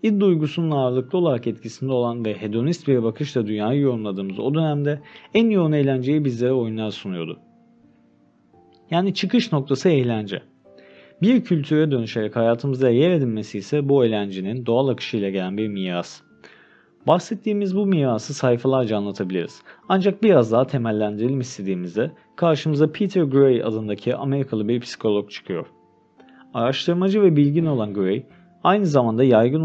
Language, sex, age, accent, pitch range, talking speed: Turkish, male, 40-59, native, 105-150 Hz, 130 wpm